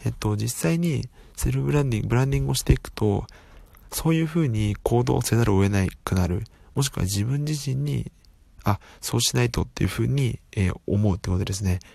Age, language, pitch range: 20-39, Japanese, 95-120 Hz